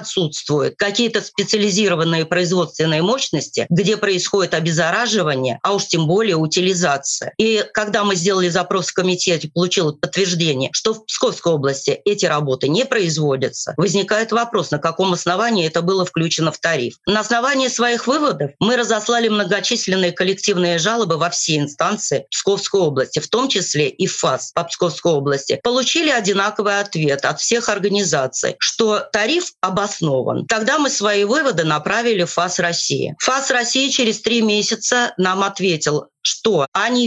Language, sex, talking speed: Russian, female, 140 wpm